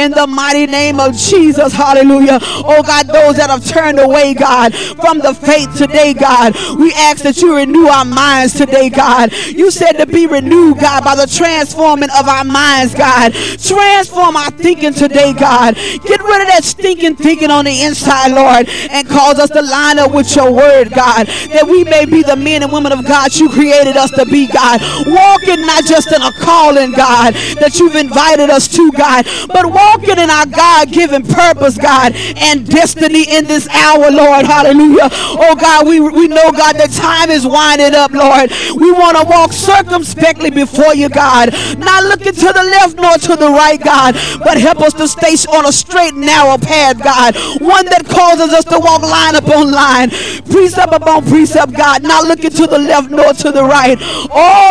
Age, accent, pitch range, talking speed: 40-59, American, 280-325 Hz, 195 wpm